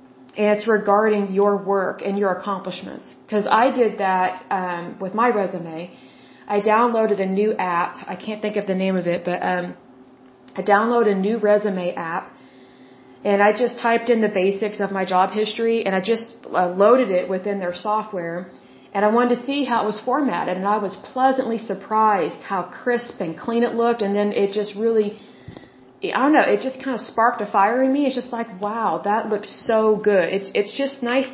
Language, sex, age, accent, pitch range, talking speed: Russian, female, 30-49, American, 185-220 Hz, 205 wpm